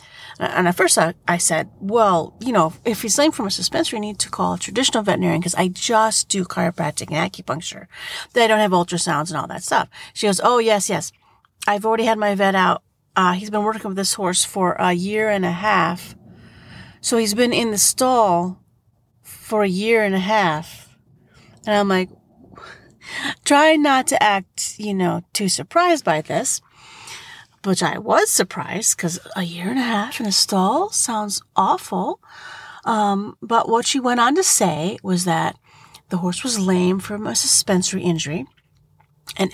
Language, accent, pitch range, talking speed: English, American, 175-225 Hz, 180 wpm